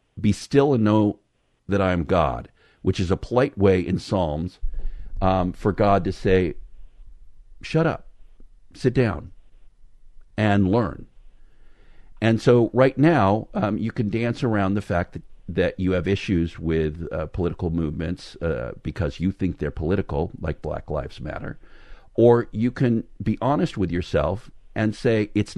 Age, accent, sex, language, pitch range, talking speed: 50-69, American, male, English, 90-120 Hz, 155 wpm